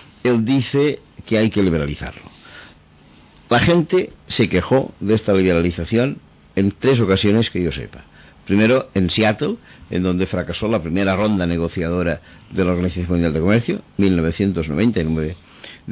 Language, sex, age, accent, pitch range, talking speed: Spanish, male, 50-69, Spanish, 85-110 Hz, 135 wpm